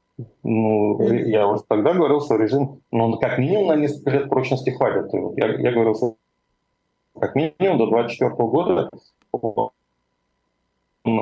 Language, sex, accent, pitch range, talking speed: Russian, male, native, 110-135 Hz, 135 wpm